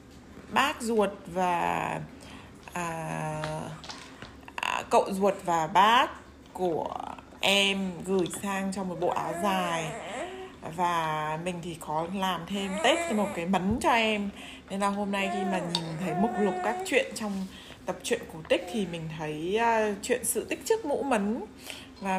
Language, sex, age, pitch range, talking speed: Vietnamese, female, 20-39, 185-240 Hz, 155 wpm